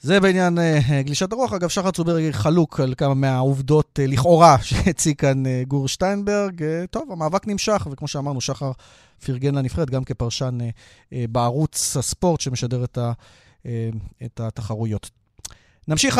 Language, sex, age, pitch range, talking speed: Hebrew, male, 30-49, 135-190 Hz, 150 wpm